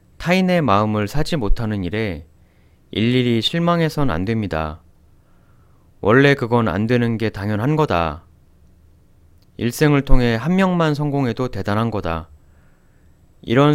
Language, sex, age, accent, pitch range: Korean, male, 30-49, native, 85-125 Hz